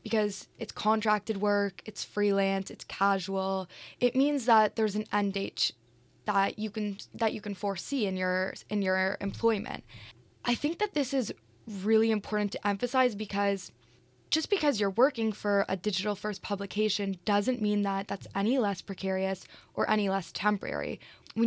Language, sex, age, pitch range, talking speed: English, female, 20-39, 195-230 Hz, 160 wpm